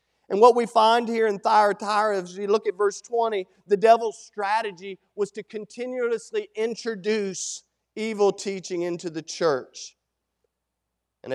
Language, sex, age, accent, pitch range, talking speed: English, male, 40-59, American, 190-230 Hz, 135 wpm